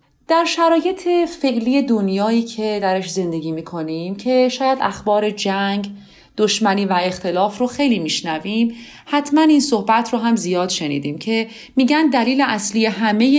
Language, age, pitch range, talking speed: Persian, 30-49, 180-260 Hz, 135 wpm